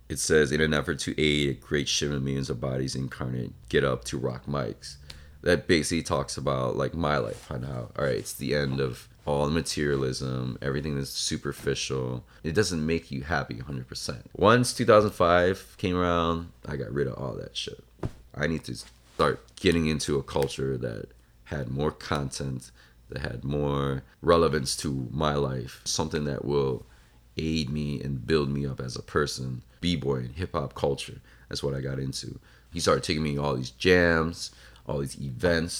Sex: male